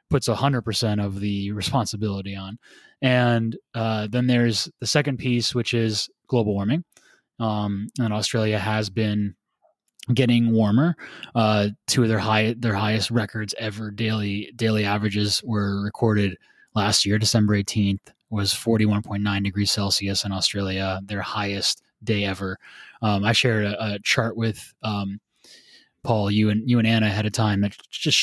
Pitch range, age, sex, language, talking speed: 100-115 Hz, 20-39, male, English, 155 wpm